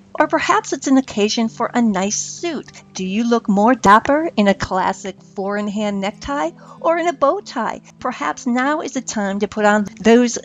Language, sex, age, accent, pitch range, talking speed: English, female, 50-69, American, 195-255 Hz, 190 wpm